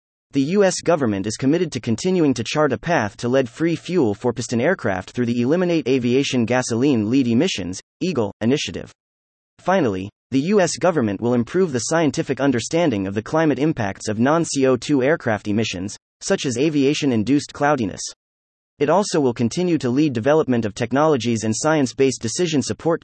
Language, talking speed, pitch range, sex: English, 150 wpm, 115-155 Hz, male